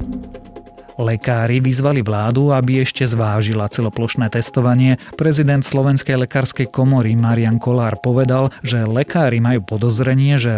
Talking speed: 115 wpm